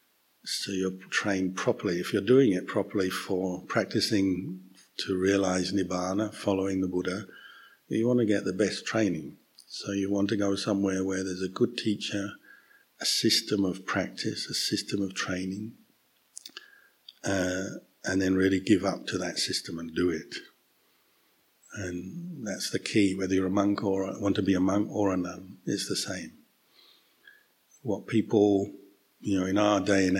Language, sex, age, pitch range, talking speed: English, male, 50-69, 95-105 Hz, 165 wpm